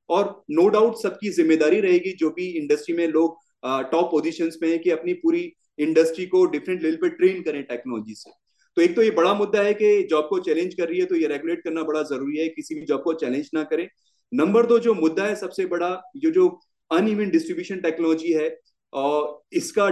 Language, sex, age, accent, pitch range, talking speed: Hindi, male, 30-49, native, 155-230 Hz, 215 wpm